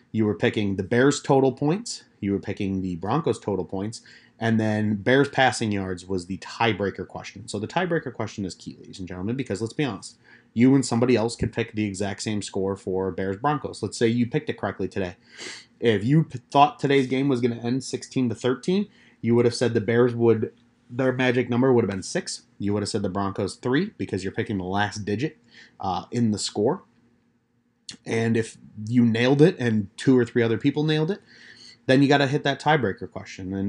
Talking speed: 215 wpm